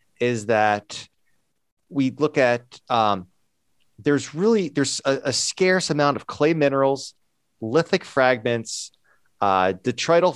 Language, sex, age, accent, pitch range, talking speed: English, male, 30-49, American, 105-140 Hz, 115 wpm